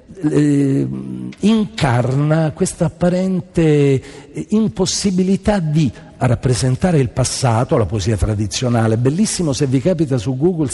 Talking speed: 100 wpm